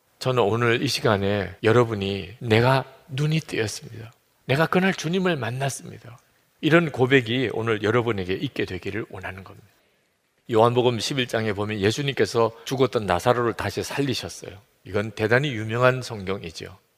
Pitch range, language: 110-160 Hz, Korean